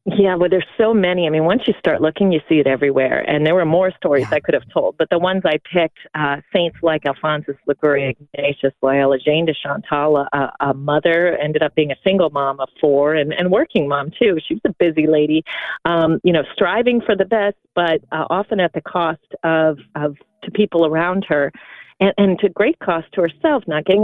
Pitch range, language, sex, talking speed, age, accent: 155-215 Hz, English, female, 215 wpm, 40-59, American